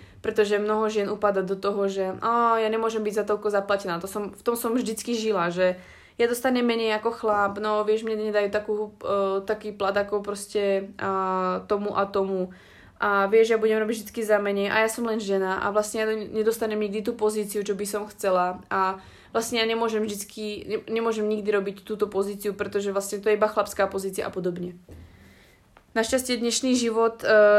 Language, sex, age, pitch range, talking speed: Slovak, female, 20-39, 195-215 Hz, 190 wpm